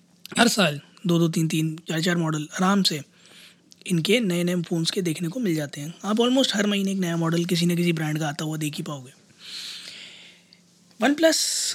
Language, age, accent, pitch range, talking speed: Hindi, 20-39, native, 170-205 Hz, 205 wpm